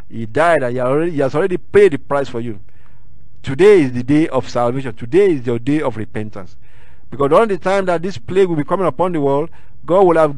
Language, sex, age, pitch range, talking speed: English, male, 50-69, 125-195 Hz, 225 wpm